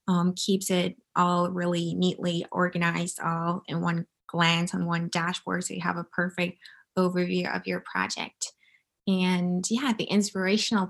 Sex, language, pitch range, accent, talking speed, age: female, English, 180-205 Hz, American, 150 wpm, 20-39